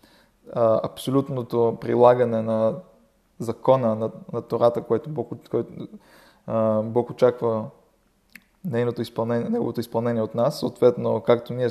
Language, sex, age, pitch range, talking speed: Bulgarian, male, 20-39, 115-130 Hz, 100 wpm